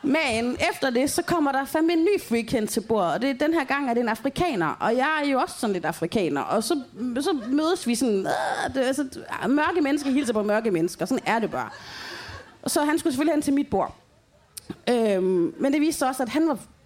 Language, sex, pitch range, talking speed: Danish, female, 225-295 Hz, 240 wpm